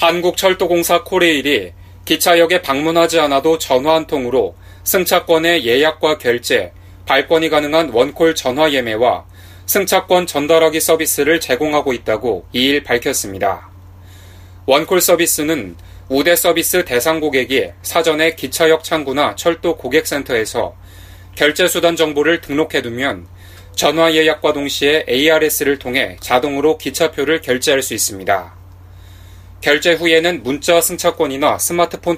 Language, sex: Korean, male